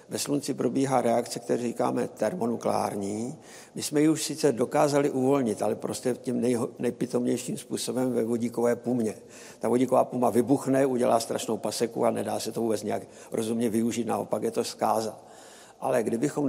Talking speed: 155 wpm